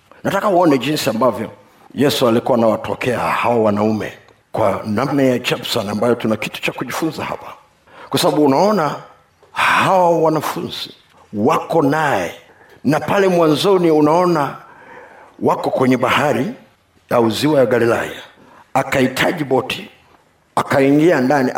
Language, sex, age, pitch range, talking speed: Swahili, male, 50-69, 115-145 Hz, 115 wpm